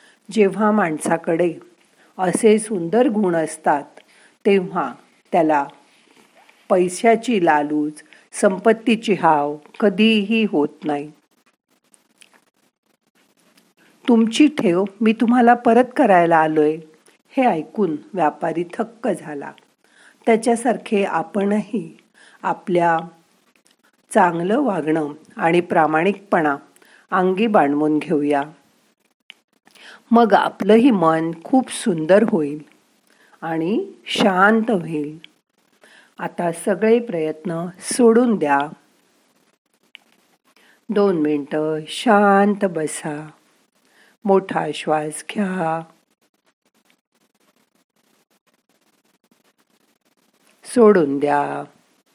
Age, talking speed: 50-69, 65 wpm